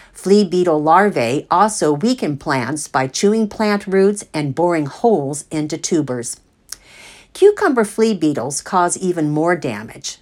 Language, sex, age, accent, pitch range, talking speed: English, female, 50-69, American, 145-205 Hz, 130 wpm